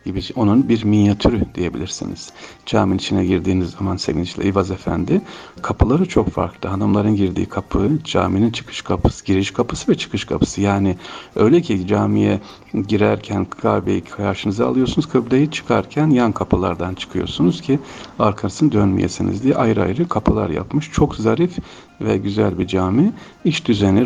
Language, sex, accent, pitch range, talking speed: Turkish, male, native, 95-130 Hz, 135 wpm